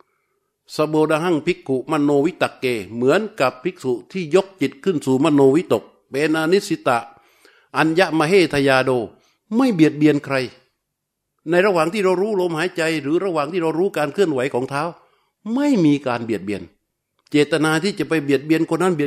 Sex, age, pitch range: male, 60-79, 125-165 Hz